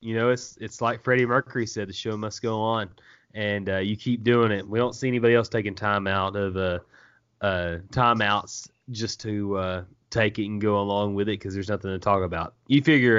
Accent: American